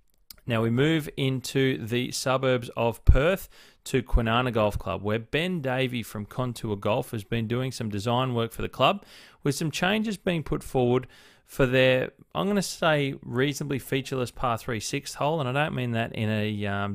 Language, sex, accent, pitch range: English, male, Australian, 110-135 Hz